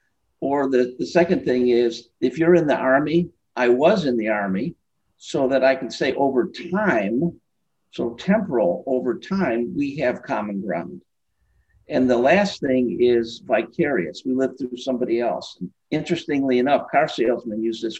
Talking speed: 160 wpm